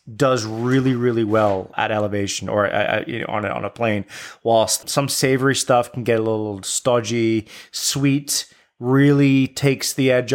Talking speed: 170 wpm